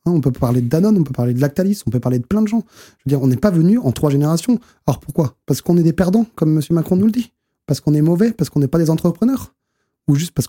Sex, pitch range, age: male, 135-190 Hz, 20-39